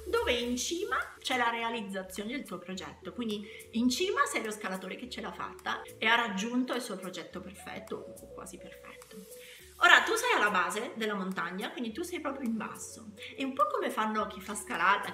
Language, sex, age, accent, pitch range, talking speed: Italian, female, 30-49, native, 190-275 Hz, 200 wpm